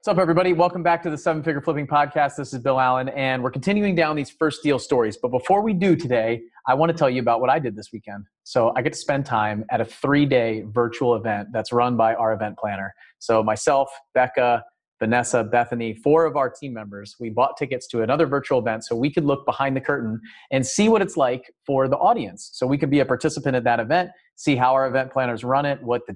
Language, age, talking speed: English, 30-49, 245 wpm